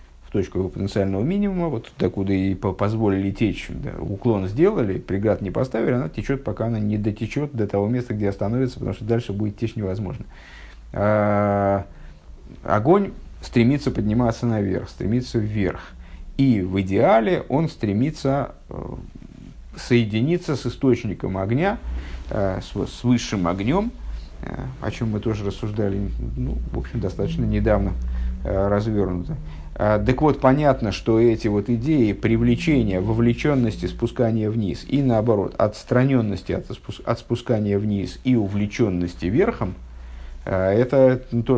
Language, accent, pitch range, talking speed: Russian, native, 95-120 Hz, 130 wpm